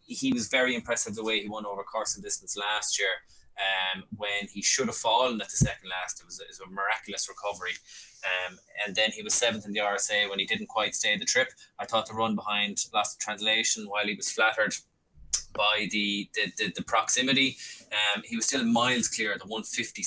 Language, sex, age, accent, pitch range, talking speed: English, male, 20-39, Irish, 100-115 Hz, 225 wpm